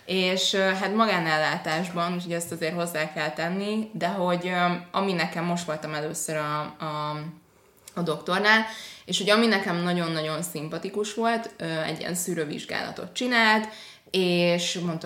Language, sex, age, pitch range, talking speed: Hungarian, female, 20-39, 155-215 Hz, 130 wpm